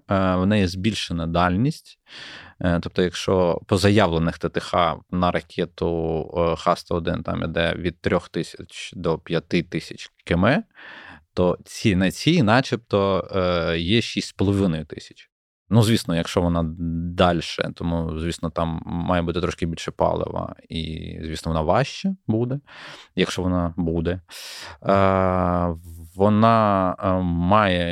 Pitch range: 85-110 Hz